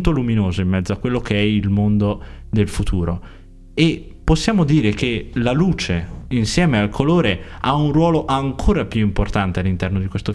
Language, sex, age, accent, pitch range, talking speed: Italian, male, 20-39, native, 95-145 Hz, 170 wpm